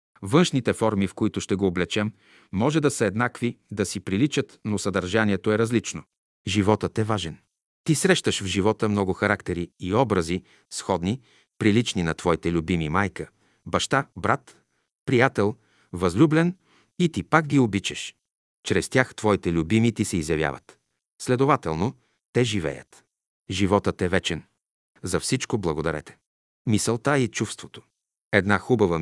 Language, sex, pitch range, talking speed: Bulgarian, male, 95-120 Hz, 135 wpm